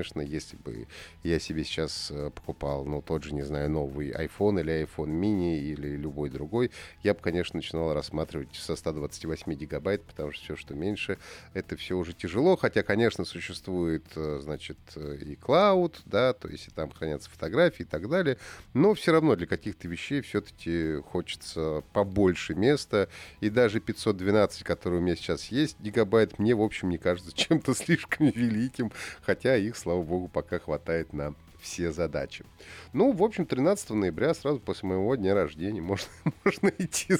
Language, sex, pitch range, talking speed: Russian, male, 80-120 Hz, 165 wpm